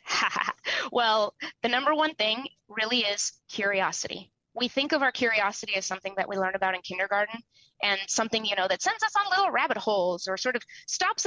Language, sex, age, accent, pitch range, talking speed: English, female, 30-49, American, 215-310 Hz, 190 wpm